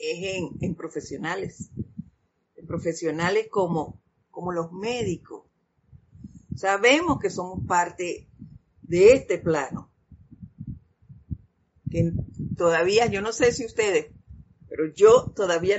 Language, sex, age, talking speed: Spanish, female, 50-69, 105 wpm